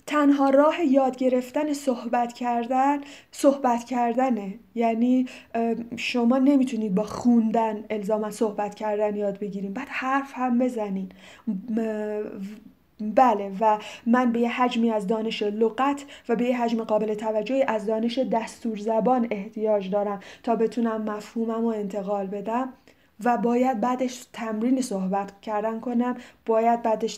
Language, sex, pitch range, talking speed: Persian, female, 215-255 Hz, 130 wpm